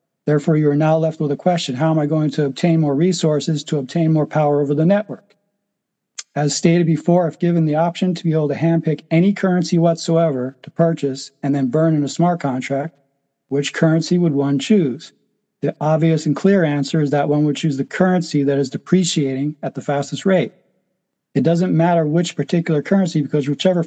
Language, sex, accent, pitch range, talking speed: English, male, American, 145-170 Hz, 200 wpm